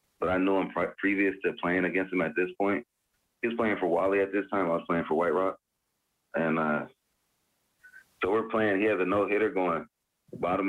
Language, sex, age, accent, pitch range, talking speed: English, male, 30-49, American, 90-115 Hz, 220 wpm